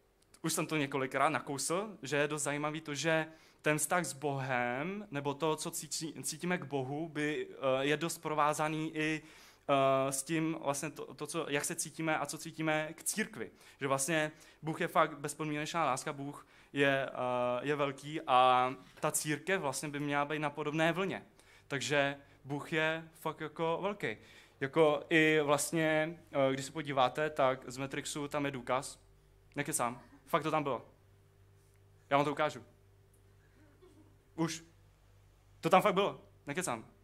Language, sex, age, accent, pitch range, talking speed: Czech, male, 20-39, native, 130-165 Hz, 155 wpm